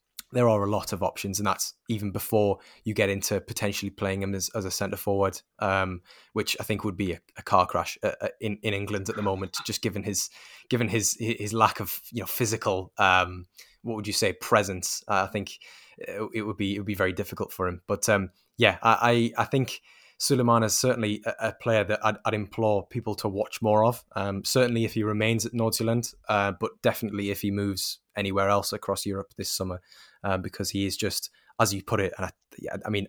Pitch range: 100-110 Hz